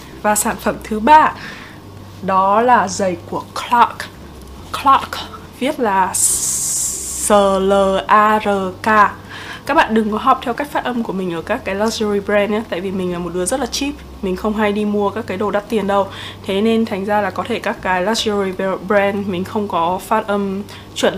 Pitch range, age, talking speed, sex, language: 190-230 Hz, 20-39, 195 wpm, female, Vietnamese